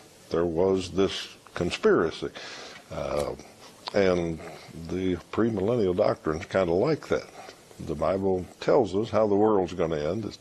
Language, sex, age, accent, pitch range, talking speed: English, male, 60-79, American, 85-100 Hz, 140 wpm